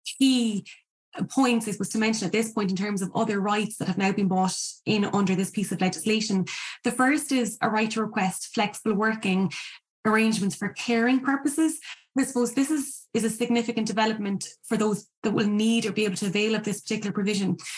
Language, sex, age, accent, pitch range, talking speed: English, female, 20-39, Irish, 200-230 Hz, 205 wpm